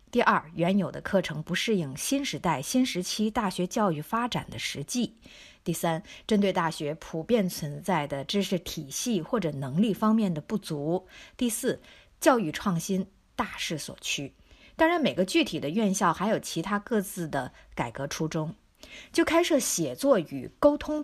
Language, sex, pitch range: Chinese, female, 165-235 Hz